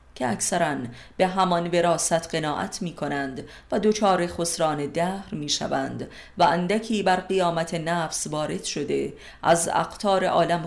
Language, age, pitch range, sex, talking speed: Persian, 30-49, 145-190 Hz, female, 130 wpm